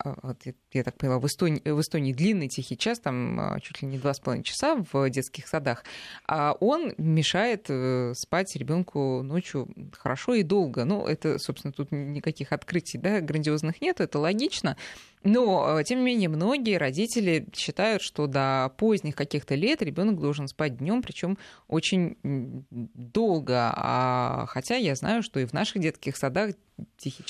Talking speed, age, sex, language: 150 wpm, 20-39, female, Russian